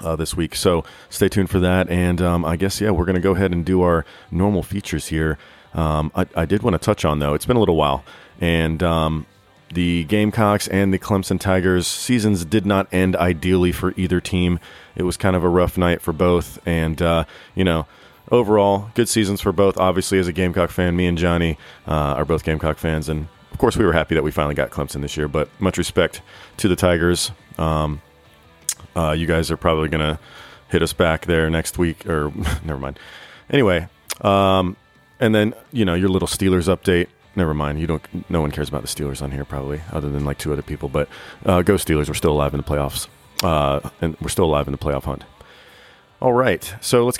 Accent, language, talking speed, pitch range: American, English, 220 wpm, 75-95 Hz